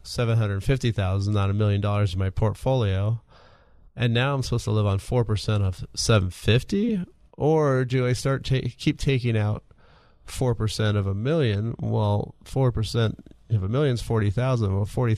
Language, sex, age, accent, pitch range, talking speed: English, male, 30-49, American, 100-125 Hz, 185 wpm